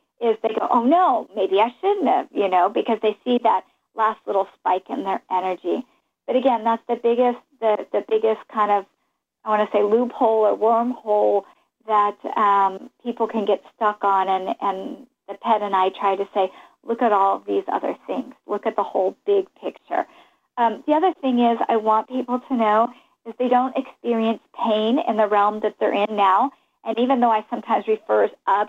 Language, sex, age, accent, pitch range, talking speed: English, female, 40-59, American, 210-250 Hz, 205 wpm